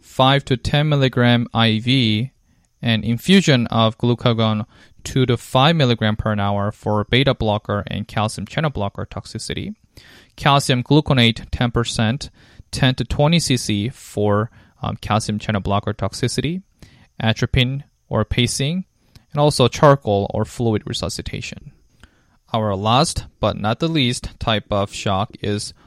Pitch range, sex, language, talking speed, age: 105-130 Hz, male, English, 125 wpm, 20-39